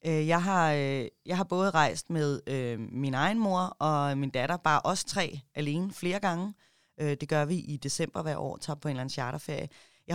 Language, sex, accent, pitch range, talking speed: Danish, female, native, 140-170 Hz, 200 wpm